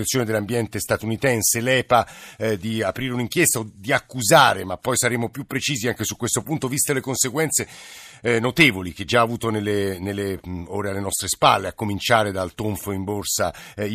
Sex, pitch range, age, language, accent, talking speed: male, 105-130 Hz, 50-69, Italian, native, 175 wpm